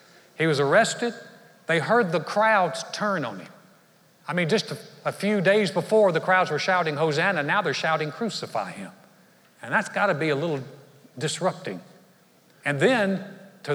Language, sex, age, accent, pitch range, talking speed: English, male, 60-79, American, 150-200 Hz, 170 wpm